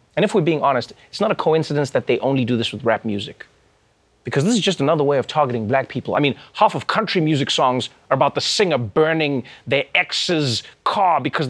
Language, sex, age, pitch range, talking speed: English, male, 30-49, 120-190 Hz, 225 wpm